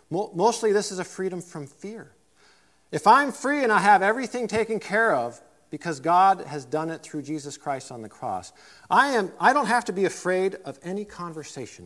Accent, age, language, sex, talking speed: American, 40-59, English, male, 190 wpm